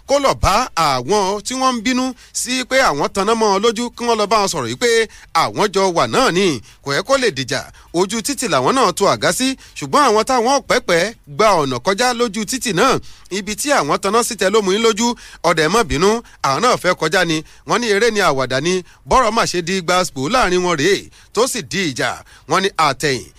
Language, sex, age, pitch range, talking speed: English, male, 40-59, 190-255 Hz, 205 wpm